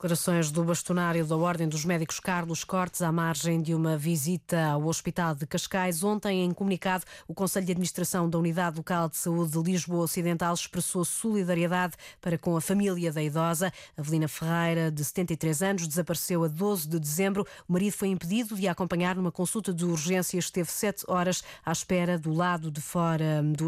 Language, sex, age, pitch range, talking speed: Portuguese, female, 20-39, 170-195 Hz, 180 wpm